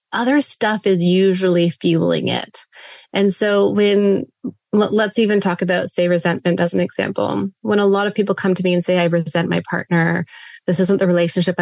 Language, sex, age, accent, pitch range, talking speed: English, female, 30-49, American, 170-195 Hz, 185 wpm